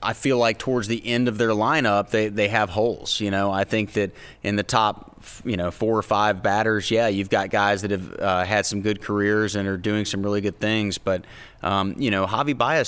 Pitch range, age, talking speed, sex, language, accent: 100-115 Hz, 30-49, 240 wpm, male, English, American